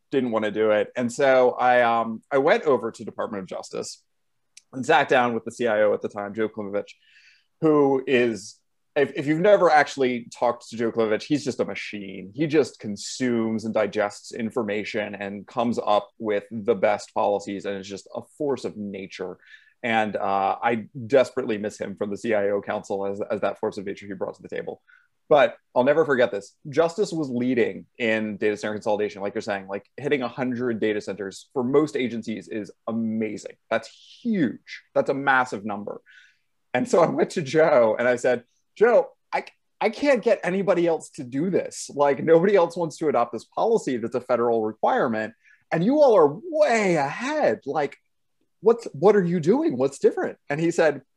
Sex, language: male, English